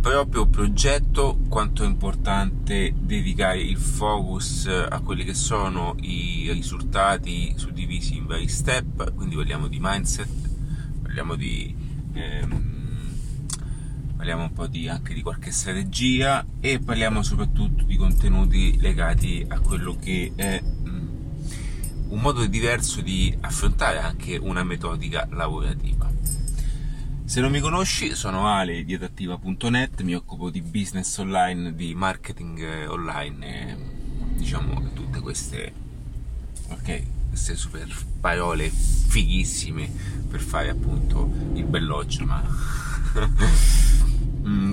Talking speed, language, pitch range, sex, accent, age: 115 wpm, Italian, 90-135 Hz, male, native, 30-49